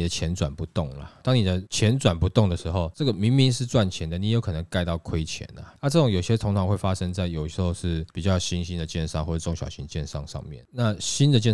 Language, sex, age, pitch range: Chinese, male, 20-39, 85-110 Hz